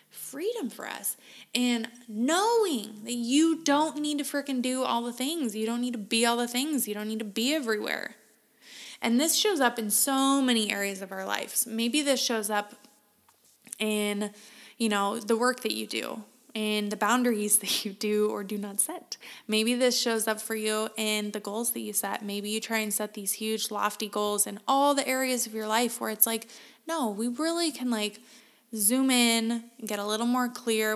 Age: 20-39